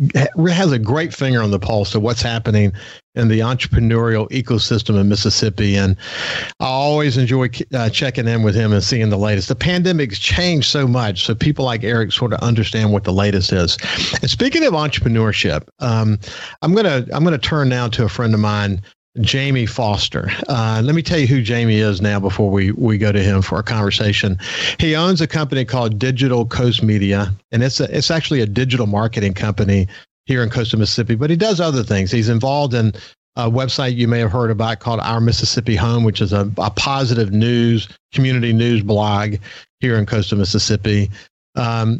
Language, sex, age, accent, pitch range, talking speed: English, male, 50-69, American, 105-130 Hz, 195 wpm